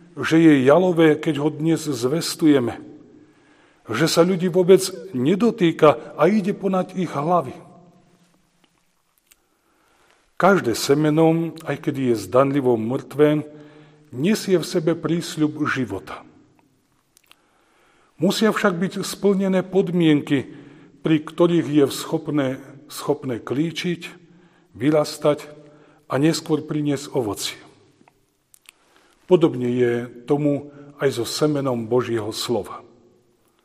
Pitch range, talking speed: 135-175 Hz, 95 wpm